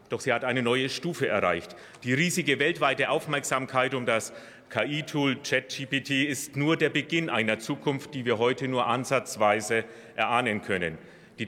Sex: male